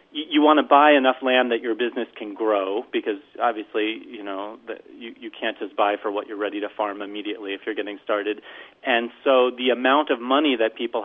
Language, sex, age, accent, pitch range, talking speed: English, male, 40-59, American, 110-145 Hz, 210 wpm